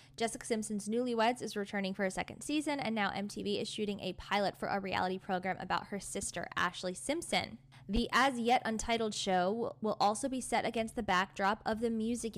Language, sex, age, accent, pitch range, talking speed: English, female, 10-29, American, 185-225 Hz, 185 wpm